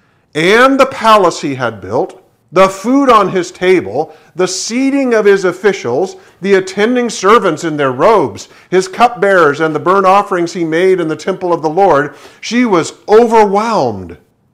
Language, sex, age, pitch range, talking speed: English, male, 50-69, 155-210 Hz, 160 wpm